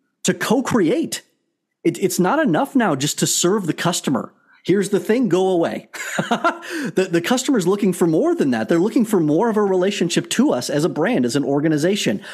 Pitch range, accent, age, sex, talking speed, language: 145-200 Hz, American, 30-49, male, 200 wpm, English